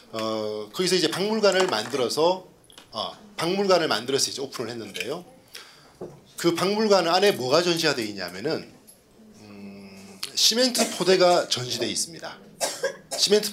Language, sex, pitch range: Korean, male, 170-220 Hz